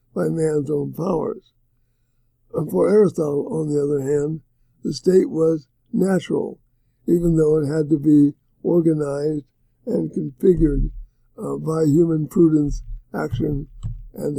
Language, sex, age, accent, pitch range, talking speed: English, male, 60-79, American, 120-165 Hz, 115 wpm